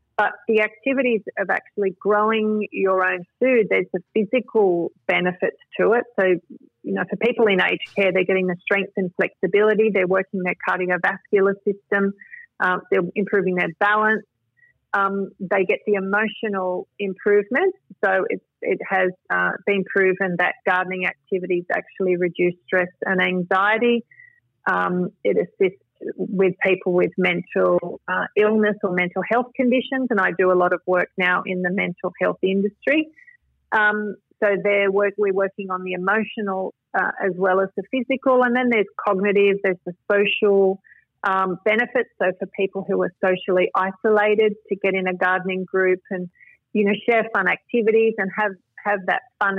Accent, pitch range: Australian, 185-215 Hz